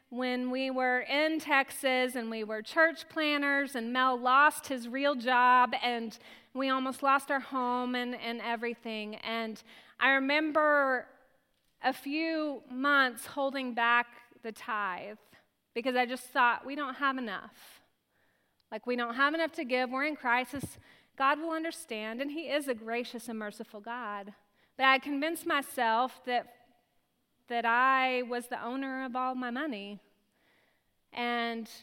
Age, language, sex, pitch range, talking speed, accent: 30-49, English, female, 220-265 Hz, 150 wpm, American